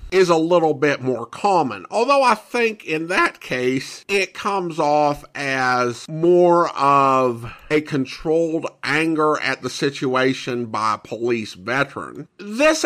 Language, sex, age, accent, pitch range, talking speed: English, male, 50-69, American, 130-185 Hz, 135 wpm